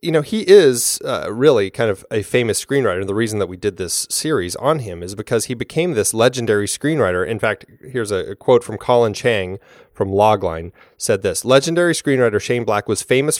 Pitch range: 95-125 Hz